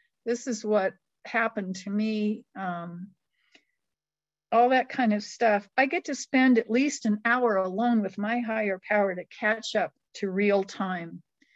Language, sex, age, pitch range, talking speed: English, female, 50-69, 190-235 Hz, 160 wpm